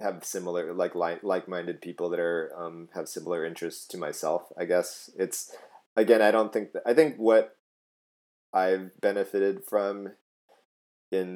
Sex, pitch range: male, 85-105 Hz